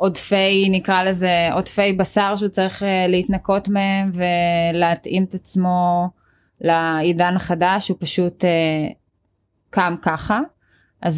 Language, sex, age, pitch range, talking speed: Hebrew, female, 20-39, 165-195 Hz, 105 wpm